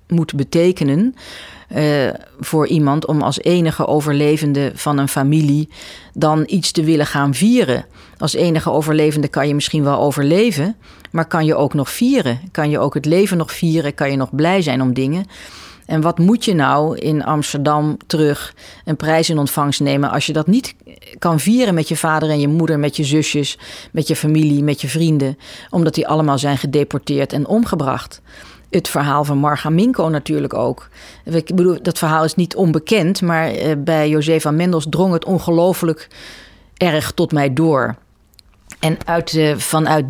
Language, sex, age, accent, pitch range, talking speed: Dutch, female, 40-59, Dutch, 145-165 Hz, 170 wpm